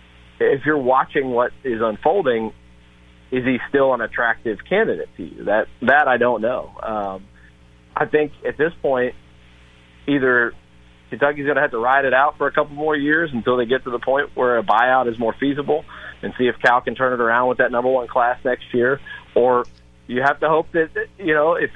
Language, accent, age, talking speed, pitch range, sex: English, American, 40-59, 205 wpm, 110-145 Hz, male